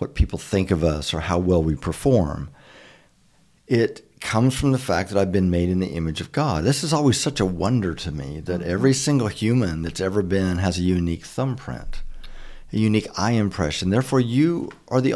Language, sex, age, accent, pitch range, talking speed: English, male, 50-69, American, 90-125 Hz, 200 wpm